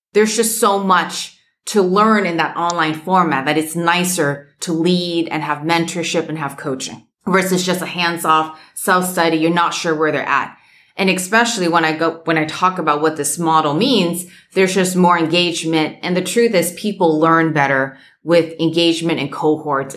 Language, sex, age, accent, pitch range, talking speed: English, female, 30-49, American, 155-185 Hz, 180 wpm